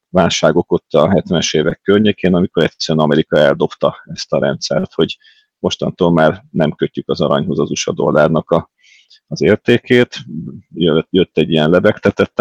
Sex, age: male, 30-49